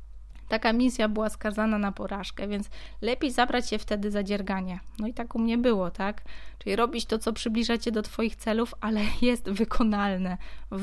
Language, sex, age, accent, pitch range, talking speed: Polish, female, 20-39, native, 200-240 Hz, 175 wpm